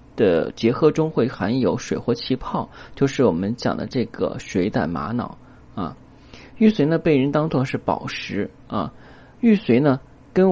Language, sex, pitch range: Chinese, male, 115-165 Hz